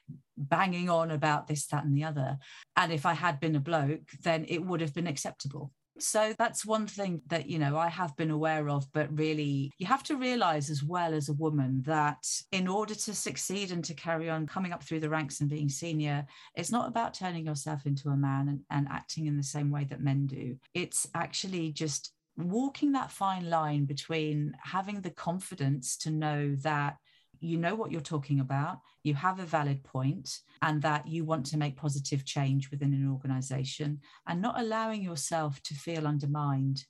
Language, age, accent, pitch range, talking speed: English, 40-59, British, 140-165 Hz, 200 wpm